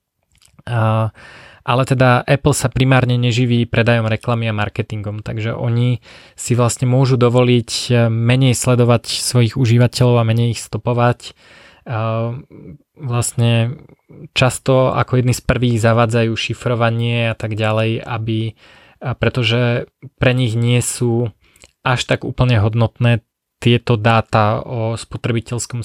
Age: 20-39